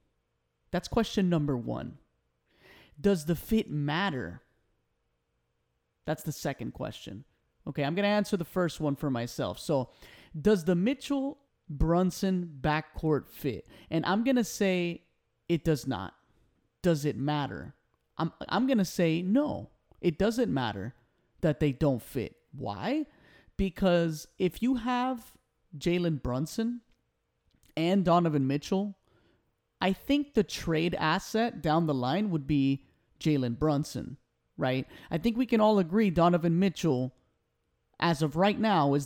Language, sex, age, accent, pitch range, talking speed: English, male, 30-49, American, 145-200 Hz, 135 wpm